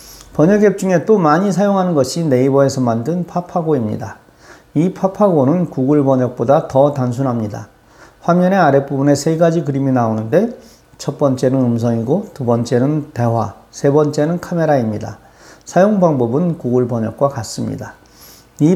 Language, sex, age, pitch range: Korean, male, 40-59, 125-170 Hz